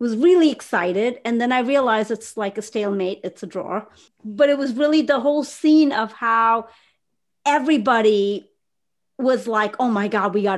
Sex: female